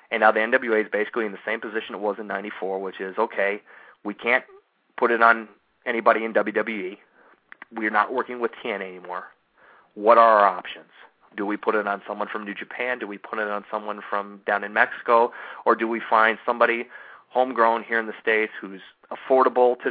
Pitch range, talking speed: 105-125 Hz, 200 wpm